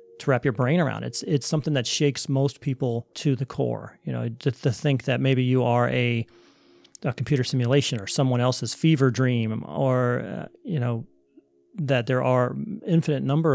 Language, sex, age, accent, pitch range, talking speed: English, male, 40-59, American, 120-145 Hz, 185 wpm